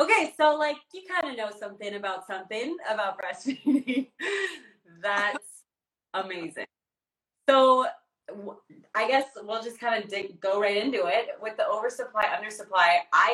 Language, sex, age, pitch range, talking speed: English, female, 20-39, 205-265 Hz, 135 wpm